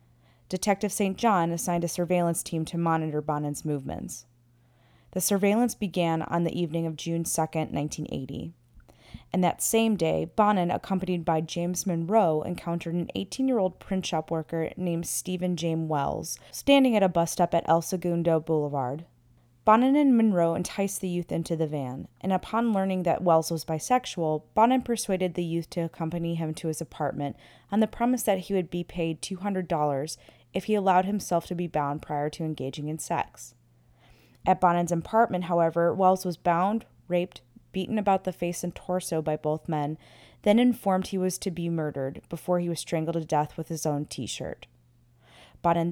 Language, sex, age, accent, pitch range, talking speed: English, female, 20-39, American, 155-185 Hz, 170 wpm